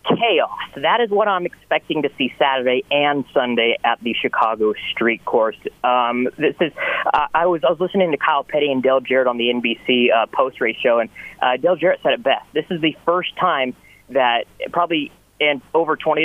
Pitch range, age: 125-165 Hz, 30-49